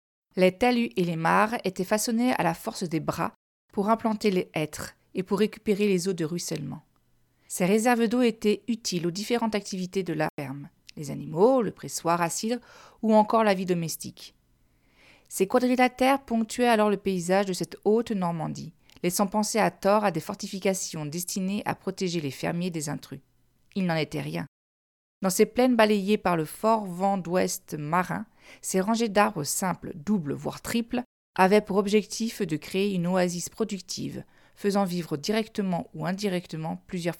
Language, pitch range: French, 170-215 Hz